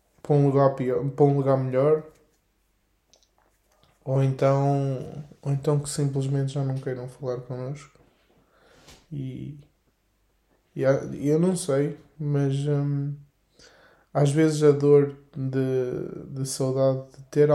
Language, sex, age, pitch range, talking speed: Portuguese, male, 20-39, 135-150 Hz, 110 wpm